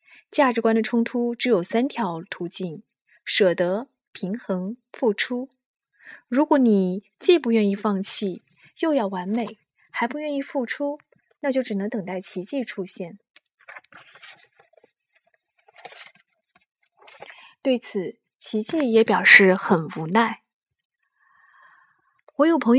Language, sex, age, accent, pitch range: Chinese, female, 20-39, native, 200-265 Hz